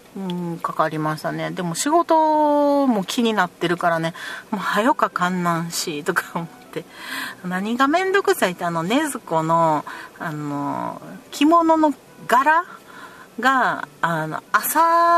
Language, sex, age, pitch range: Japanese, female, 40-59, 165-255 Hz